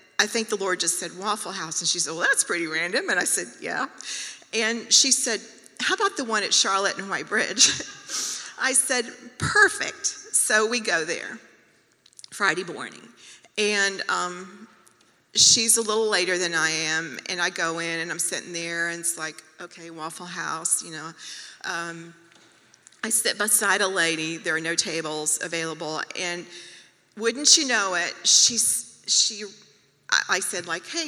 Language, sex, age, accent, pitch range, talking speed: English, female, 40-59, American, 175-225 Hz, 165 wpm